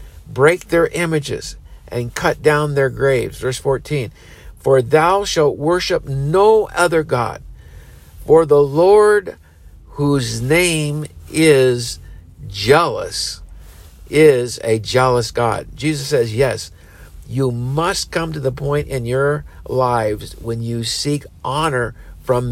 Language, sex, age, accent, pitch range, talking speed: English, male, 50-69, American, 115-155 Hz, 120 wpm